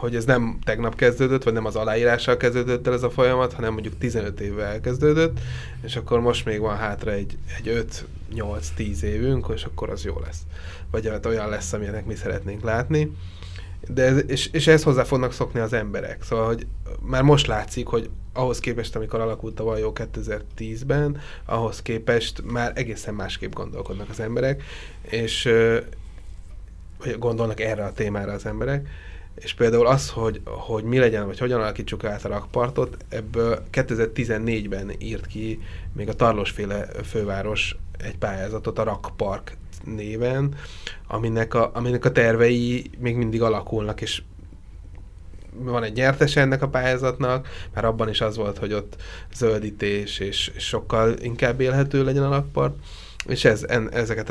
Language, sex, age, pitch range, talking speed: Hungarian, male, 20-39, 100-120 Hz, 155 wpm